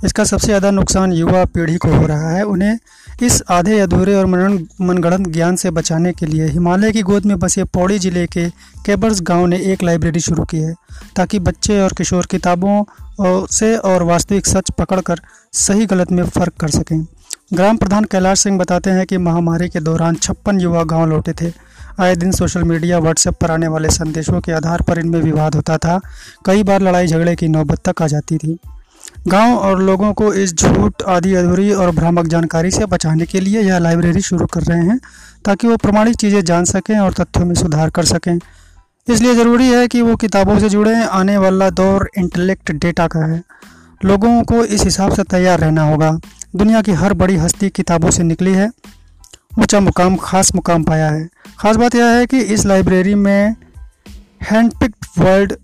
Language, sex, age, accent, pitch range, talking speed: Hindi, male, 30-49, native, 170-200 Hz, 190 wpm